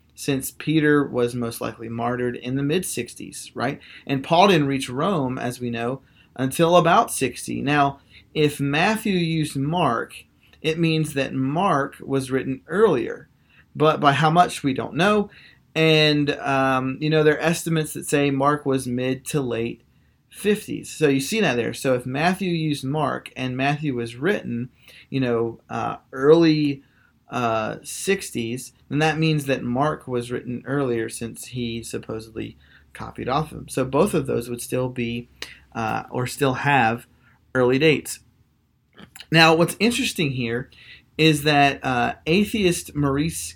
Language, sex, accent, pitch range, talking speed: English, male, American, 120-155 Hz, 155 wpm